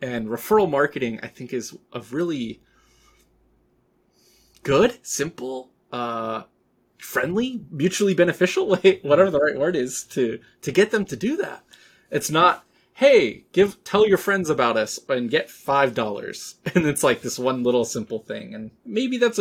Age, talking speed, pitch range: 20-39, 155 wpm, 115-180 Hz